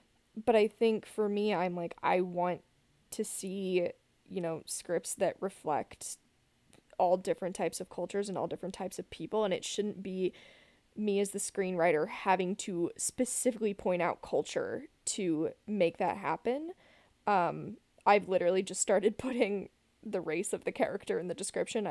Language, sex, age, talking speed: English, female, 20-39, 160 wpm